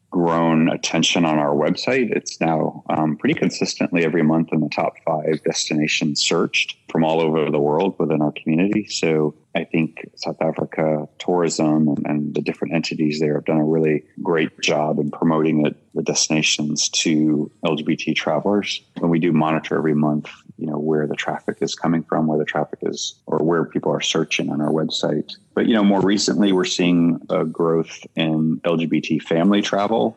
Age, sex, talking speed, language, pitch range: 30-49, male, 180 wpm, English, 75-85 Hz